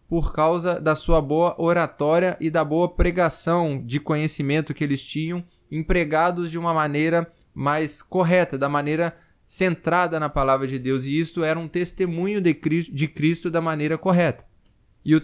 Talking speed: 160 wpm